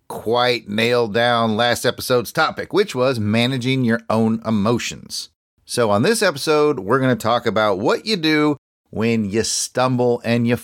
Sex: male